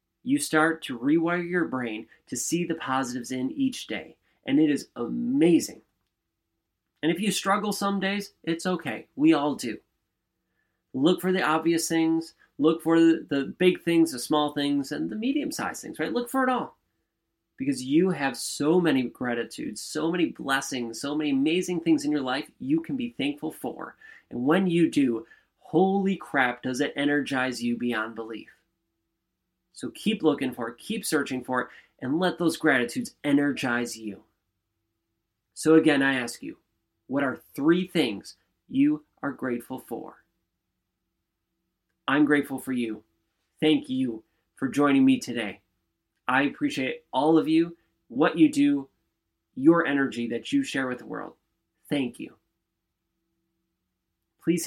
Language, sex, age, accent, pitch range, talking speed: English, male, 30-49, American, 120-185 Hz, 155 wpm